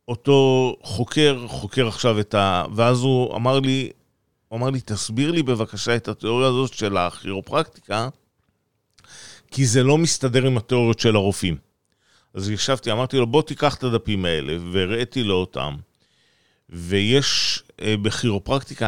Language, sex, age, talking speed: Hebrew, male, 40-59, 135 wpm